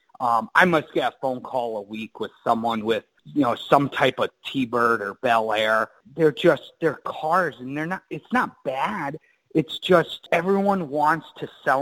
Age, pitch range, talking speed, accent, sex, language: 30-49, 125-180 Hz, 190 wpm, American, male, English